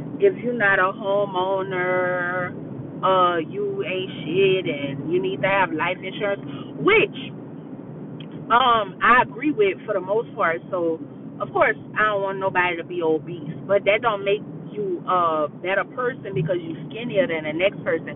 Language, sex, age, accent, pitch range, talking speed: English, female, 30-49, American, 160-215 Hz, 165 wpm